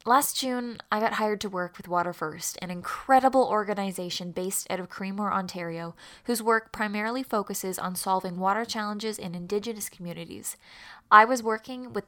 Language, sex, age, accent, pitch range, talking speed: English, female, 10-29, American, 185-225 Hz, 165 wpm